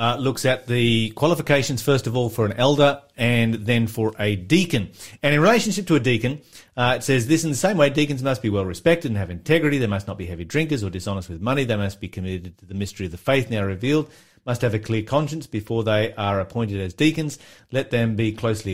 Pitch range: 100-135 Hz